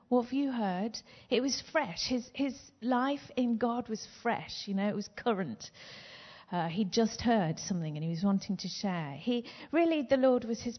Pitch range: 175-230 Hz